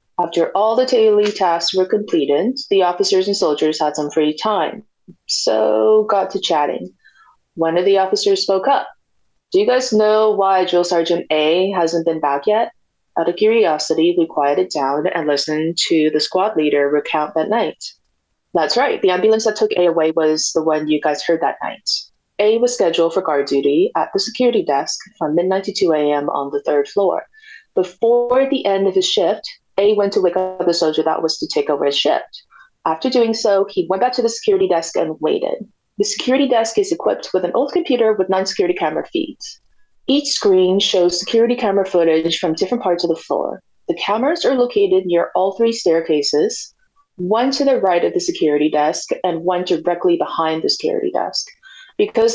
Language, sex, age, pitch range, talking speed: English, female, 30-49, 165-230 Hz, 195 wpm